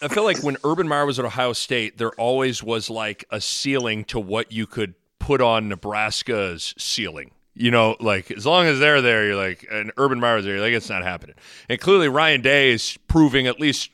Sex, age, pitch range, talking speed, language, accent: male, 30-49, 110-160 Hz, 220 wpm, English, American